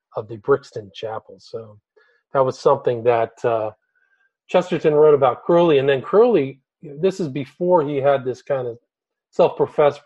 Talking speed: 155 wpm